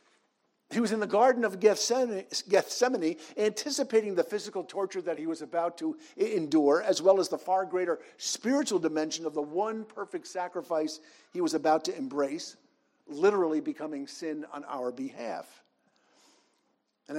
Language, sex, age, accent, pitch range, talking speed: English, male, 50-69, American, 160-270 Hz, 150 wpm